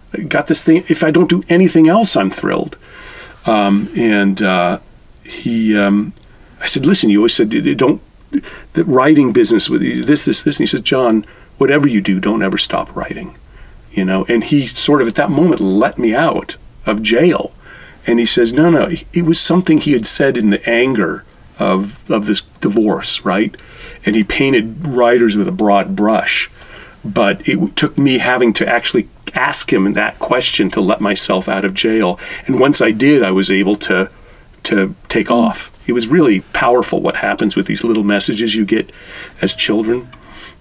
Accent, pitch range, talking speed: American, 105-145 Hz, 185 wpm